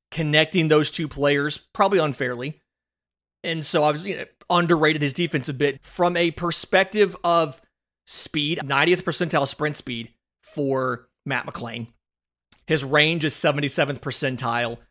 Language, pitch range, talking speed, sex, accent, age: English, 135-165 Hz, 130 wpm, male, American, 30-49